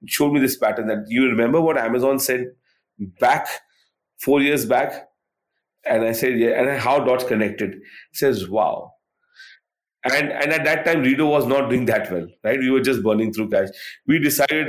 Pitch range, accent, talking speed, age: 110-145 Hz, Indian, 180 wpm, 30-49